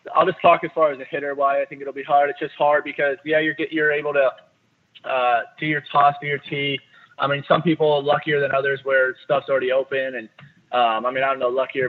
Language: English